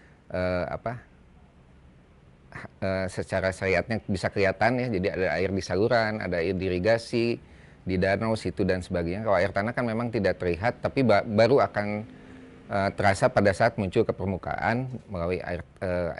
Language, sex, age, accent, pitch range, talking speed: Indonesian, male, 30-49, native, 95-115 Hz, 160 wpm